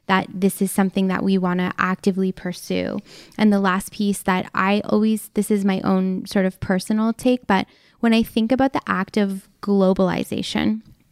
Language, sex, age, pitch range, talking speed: English, female, 10-29, 185-205 Hz, 185 wpm